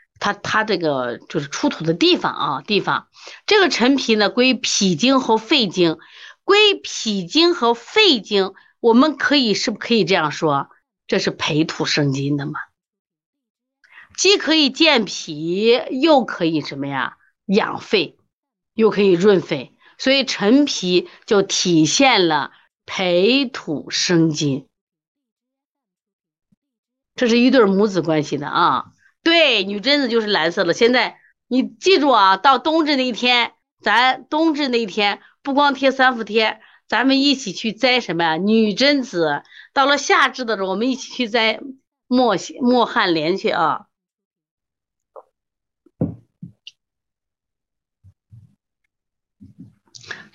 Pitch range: 185-275 Hz